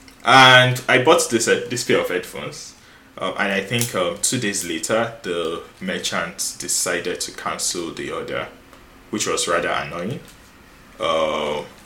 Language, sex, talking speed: English, male, 145 wpm